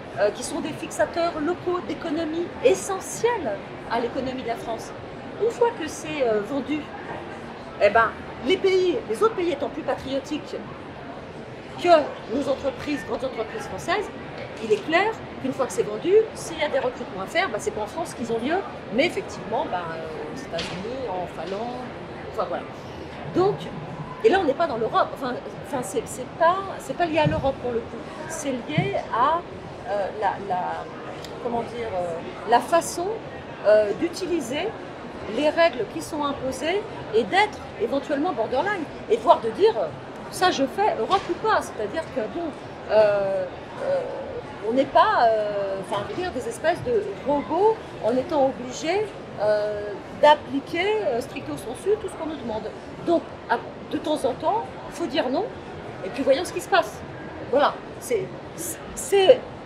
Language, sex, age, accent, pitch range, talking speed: French, female, 40-59, French, 260-375 Hz, 160 wpm